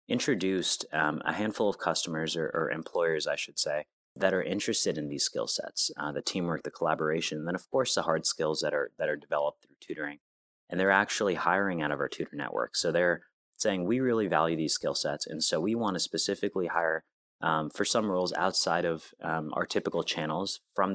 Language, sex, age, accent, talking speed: English, male, 30-49, American, 210 wpm